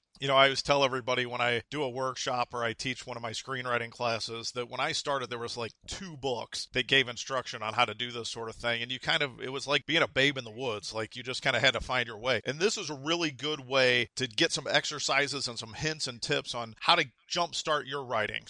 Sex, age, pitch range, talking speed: male, 40-59, 125-155 Hz, 275 wpm